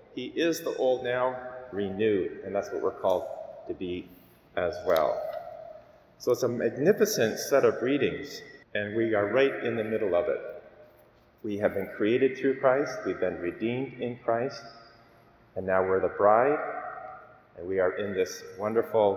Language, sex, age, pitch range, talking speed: English, male, 30-49, 110-145 Hz, 165 wpm